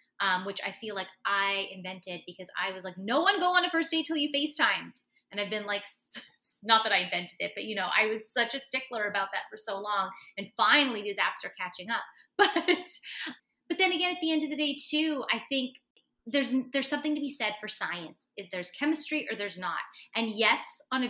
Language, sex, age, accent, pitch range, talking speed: English, female, 30-49, American, 190-275 Hz, 235 wpm